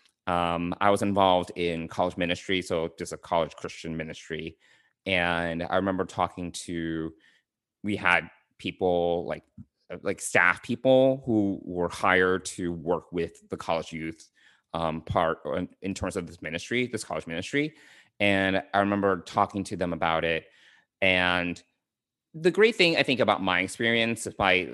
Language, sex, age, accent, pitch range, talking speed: English, male, 30-49, American, 85-110 Hz, 150 wpm